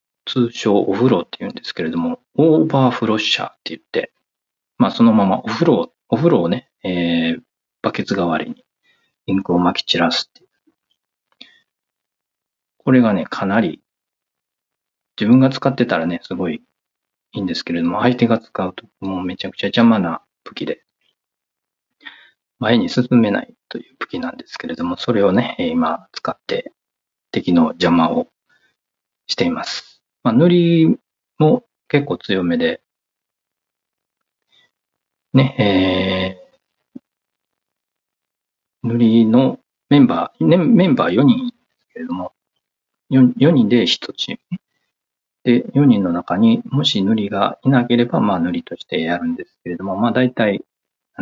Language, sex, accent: Japanese, male, native